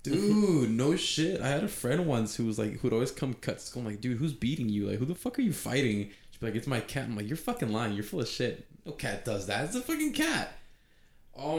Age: 20-39